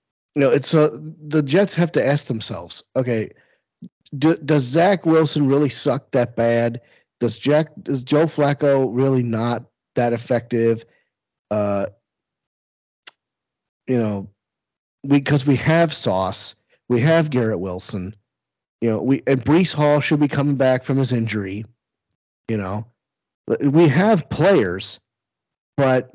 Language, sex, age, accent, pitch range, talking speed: English, male, 40-59, American, 115-155 Hz, 135 wpm